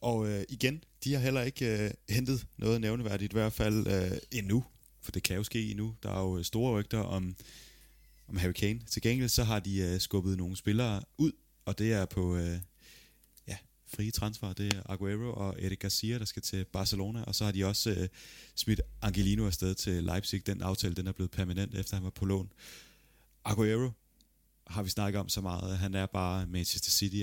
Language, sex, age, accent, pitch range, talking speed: Danish, male, 30-49, native, 95-110 Hz, 205 wpm